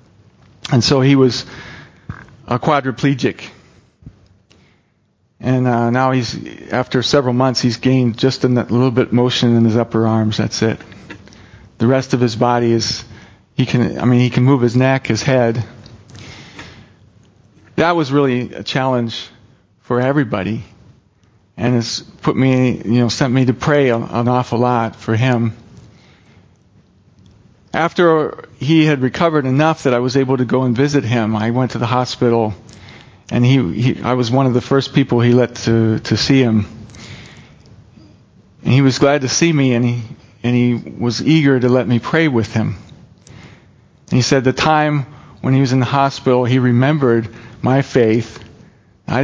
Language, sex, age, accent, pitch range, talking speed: English, male, 40-59, American, 115-135 Hz, 165 wpm